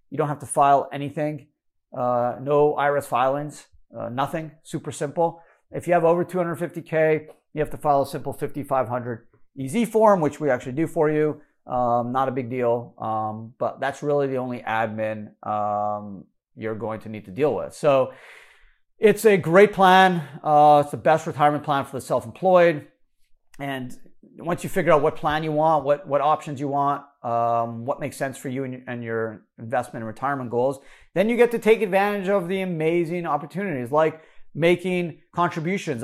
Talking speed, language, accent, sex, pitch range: 180 wpm, English, American, male, 135-170 Hz